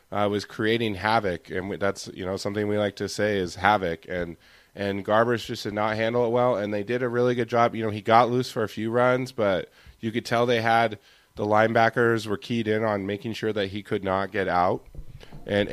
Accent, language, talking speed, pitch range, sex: American, English, 235 wpm, 95-115 Hz, male